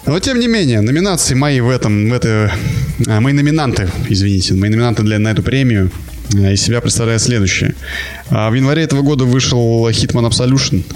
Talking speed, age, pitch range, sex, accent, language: 150 wpm, 20-39, 100-135 Hz, male, native, Russian